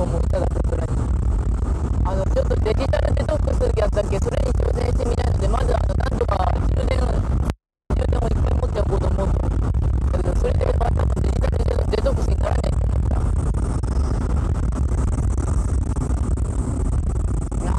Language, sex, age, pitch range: Japanese, female, 30-49, 75-95 Hz